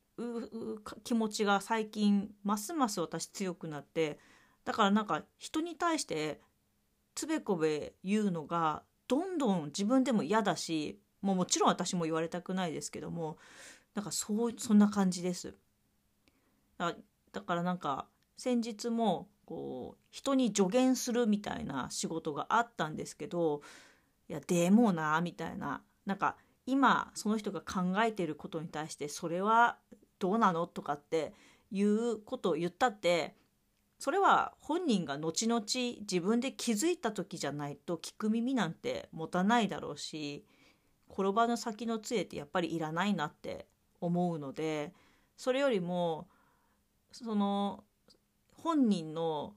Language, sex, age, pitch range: Japanese, female, 40-59, 170-235 Hz